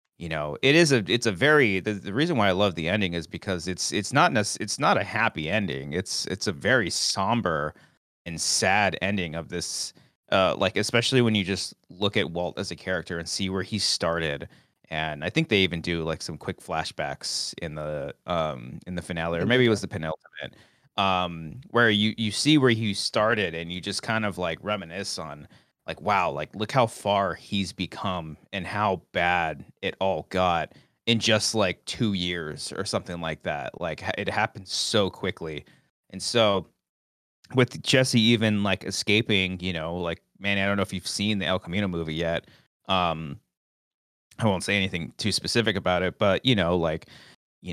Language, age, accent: English, 30-49, American